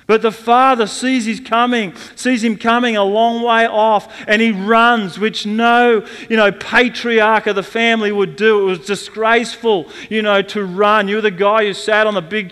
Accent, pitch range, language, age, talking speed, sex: Australian, 155-220 Hz, English, 40-59, 200 wpm, male